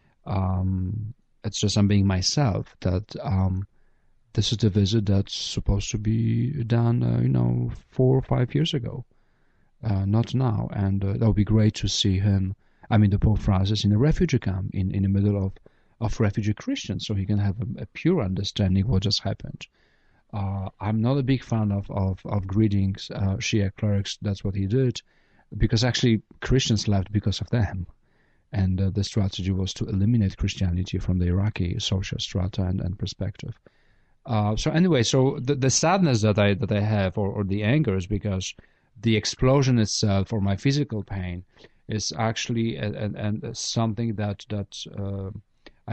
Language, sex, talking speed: English, male, 185 wpm